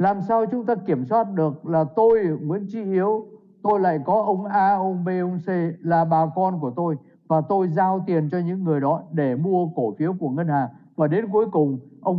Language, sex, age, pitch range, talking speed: Vietnamese, male, 60-79, 155-205 Hz, 225 wpm